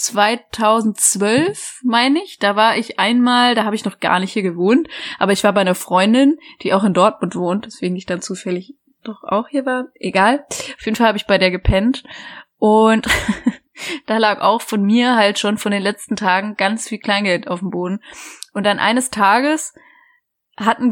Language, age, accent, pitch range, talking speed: German, 20-39, German, 195-245 Hz, 190 wpm